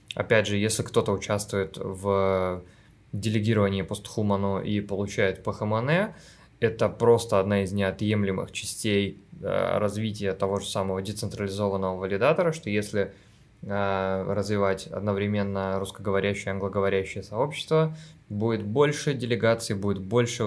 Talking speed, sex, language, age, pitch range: 105 wpm, male, Russian, 20-39, 100-115 Hz